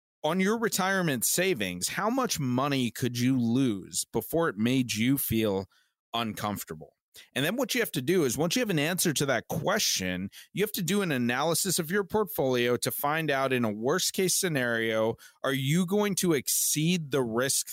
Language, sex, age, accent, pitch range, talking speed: English, male, 30-49, American, 115-155 Hz, 185 wpm